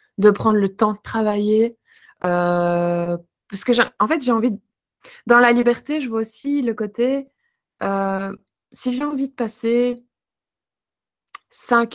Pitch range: 195-240 Hz